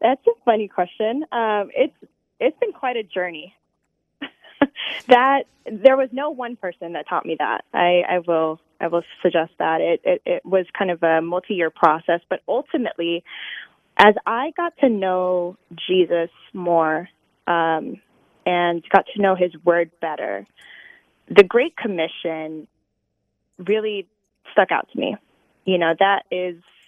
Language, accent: English, American